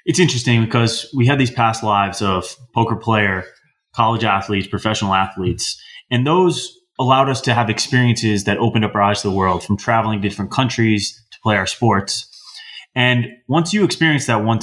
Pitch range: 105-130 Hz